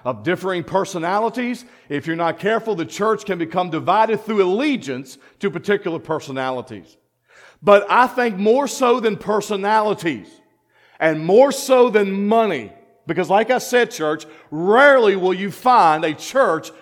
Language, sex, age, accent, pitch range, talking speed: English, male, 50-69, American, 170-235 Hz, 145 wpm